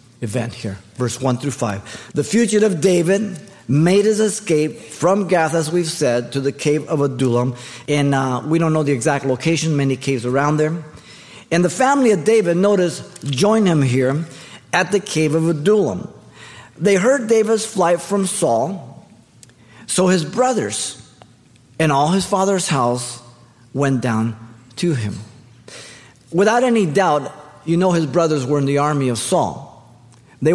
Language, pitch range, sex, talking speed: English, 130-185 Hz, male, 155 wpm